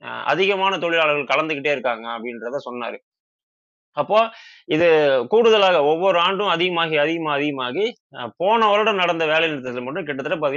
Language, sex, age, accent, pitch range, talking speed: Tamil, male, 20-39, native, 130-185 Hz, 115 wpm